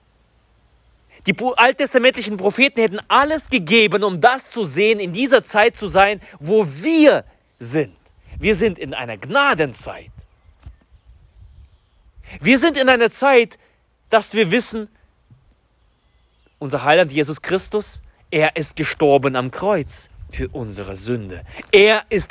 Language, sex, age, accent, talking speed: German, male, 30-49, German, 120 wpm